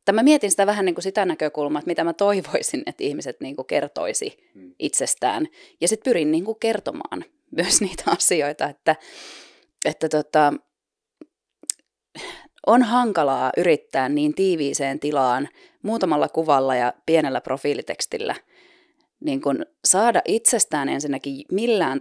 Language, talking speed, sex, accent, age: Finnish, 115 wpm, female, native, 20-39